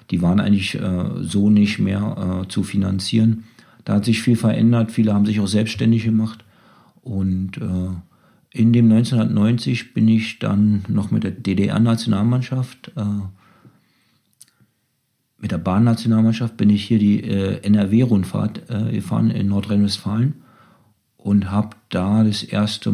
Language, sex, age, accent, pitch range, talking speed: German, male, 50-69, German, 95-110 Hz, 130 wpm